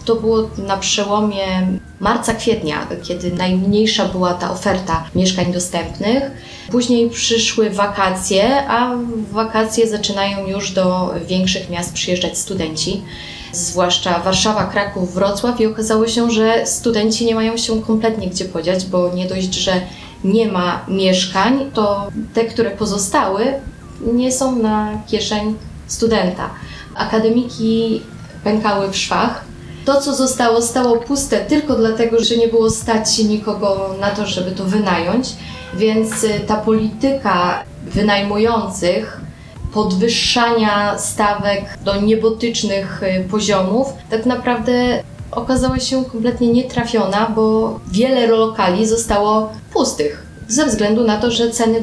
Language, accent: Polish, native